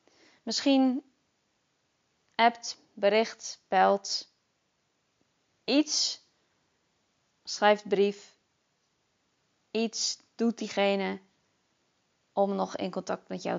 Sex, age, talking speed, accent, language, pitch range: female, 20-39, 70 wpm, Dutch, Dutch, 195-235 Hz